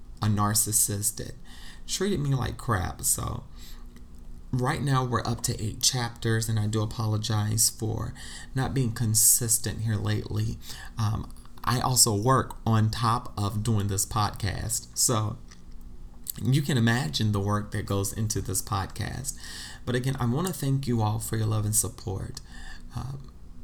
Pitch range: 100-120 Hz